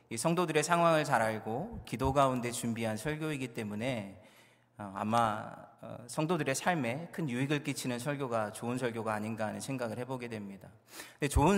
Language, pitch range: Korean, 110-150 Hz